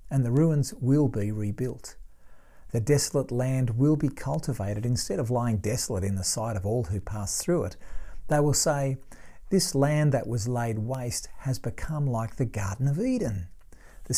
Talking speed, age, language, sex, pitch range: 180 wpm, 50-69, English, male, 105-145 Hz